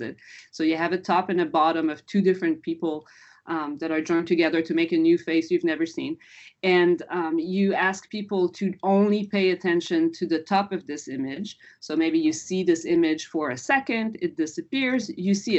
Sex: female